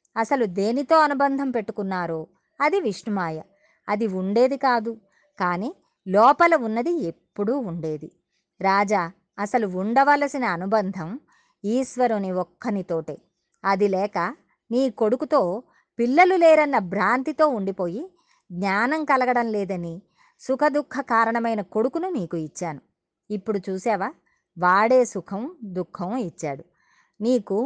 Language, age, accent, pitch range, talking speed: Telugu, 20-39, native, 190-260 Hz, 95 wpm